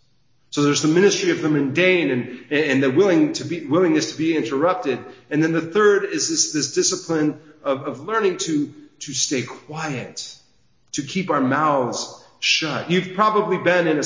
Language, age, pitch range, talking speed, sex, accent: English, 40-59, 155-210 Hz, 180 wpm, male, American